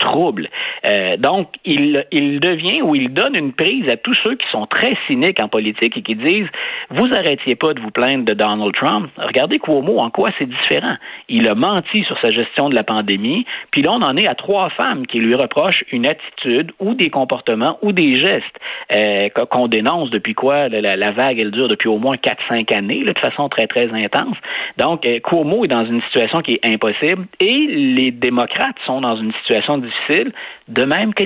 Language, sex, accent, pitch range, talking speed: French, male, Canadian, 110-185 Hz, 205 wpm